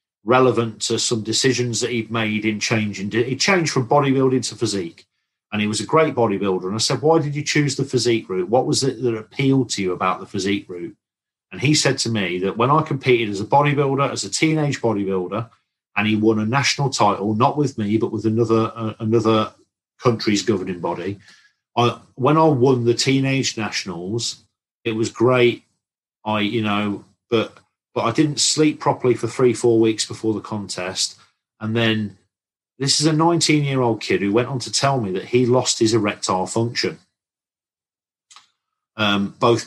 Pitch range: 110-135 Hz